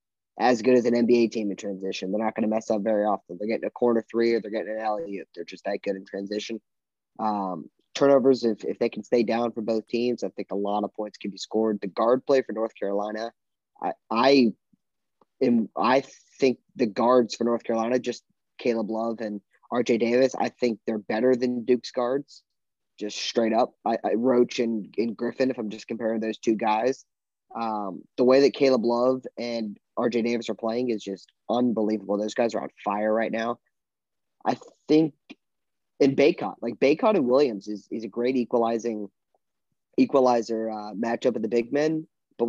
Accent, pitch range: American, 110-125 Hz